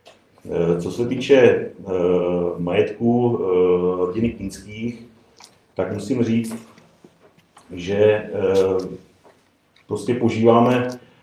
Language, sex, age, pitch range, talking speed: Czech, male, 40-59, 105-120 Hz, 65 wpm